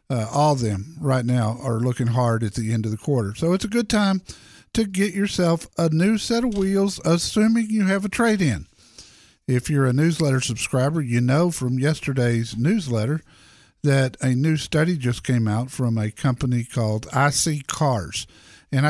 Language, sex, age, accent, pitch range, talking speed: English, male, 50-69, American, 120-160 Hz, 180 wpm